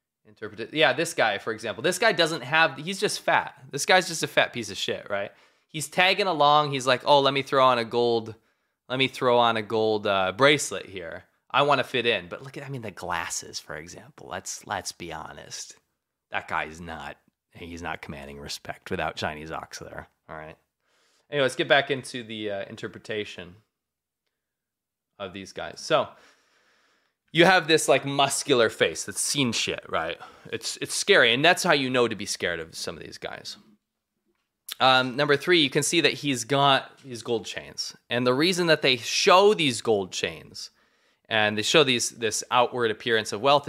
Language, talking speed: English, 195 wpm